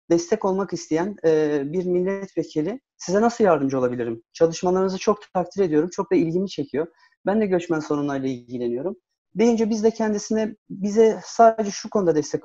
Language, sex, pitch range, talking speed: Turkish, male, 170-210 Hz, 155 wpm